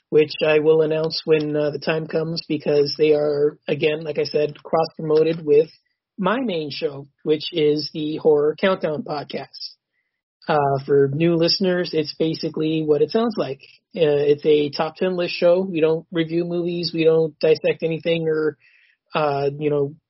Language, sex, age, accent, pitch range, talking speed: English, male, 30-49, American, 150-175 Hz, 165 wpm